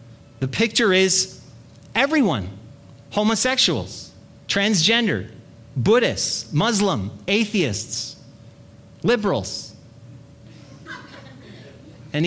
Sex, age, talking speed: male, 30-49, 55 wpm